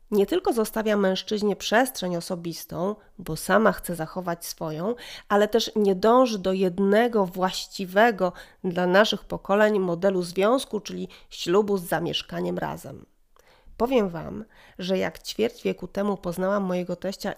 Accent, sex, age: native, female, 30-49